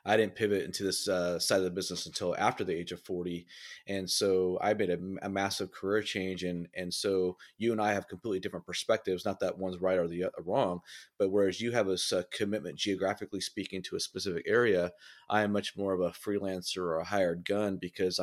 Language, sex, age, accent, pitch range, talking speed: English, male, 30-49, American, 90-105 Hz, 225 wpm